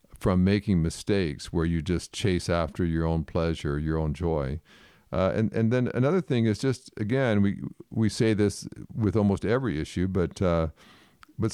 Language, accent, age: English, American, 50-69